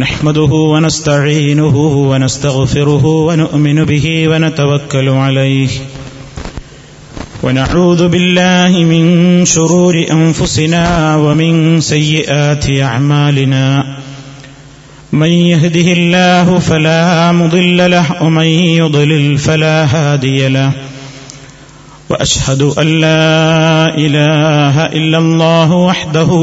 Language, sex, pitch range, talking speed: Malayalam, male, 135-160 Hz, 75 wpm